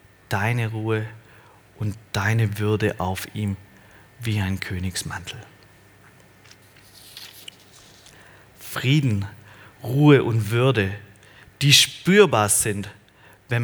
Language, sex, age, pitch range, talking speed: German, male, 40-59, 100-130 Hz, 80 wpm